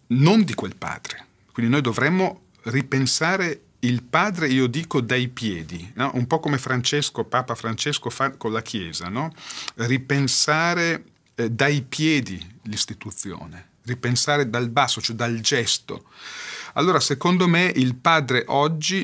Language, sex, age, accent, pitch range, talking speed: Italian, male, 40-59, native, 110-140 Hz, 130 wpm